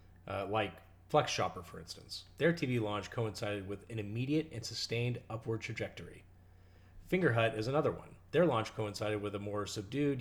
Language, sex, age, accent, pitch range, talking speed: English, male, 30-49, American, 95-120 Hz, 170 wpm